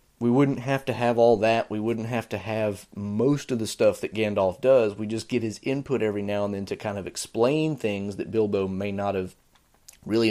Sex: male